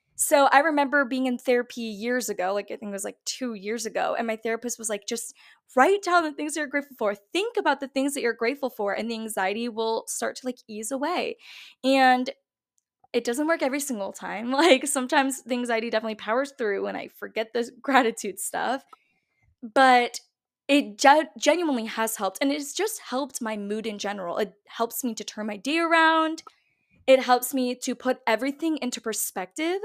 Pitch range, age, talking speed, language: 220-280 Hz, 10-29, 195 wpm, English